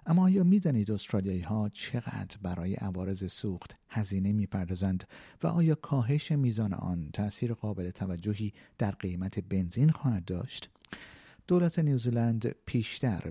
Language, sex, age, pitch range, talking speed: Persian, male, 50-69, 100-135 Hz, 115 wpm